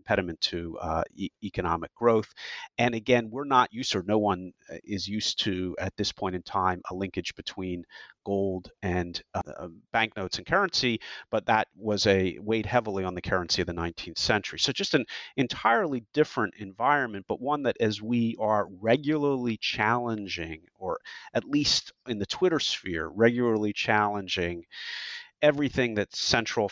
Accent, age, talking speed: American, 40-59, 160 wpm